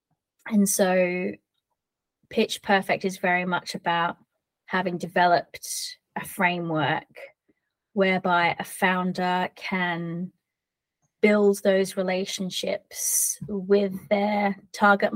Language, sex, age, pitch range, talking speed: English, female, 20-39, 175-200 Hz, 85 wpm